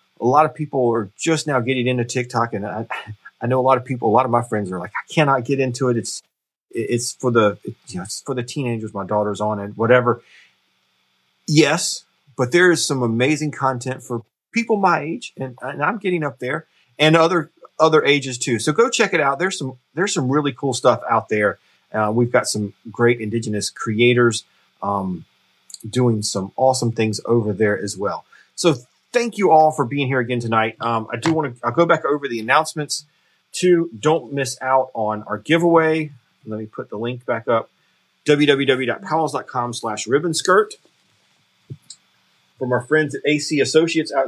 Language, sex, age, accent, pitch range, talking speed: English, male, 30-49, American, 115-155 Hz, 190 wpm